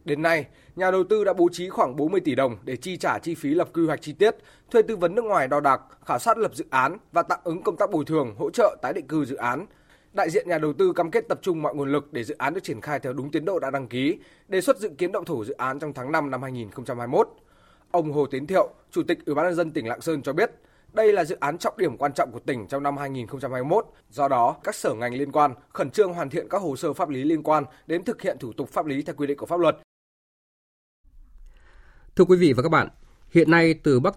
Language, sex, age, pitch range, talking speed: Vietnamese, male, 20-39, 130-175 Hz, 275 wpm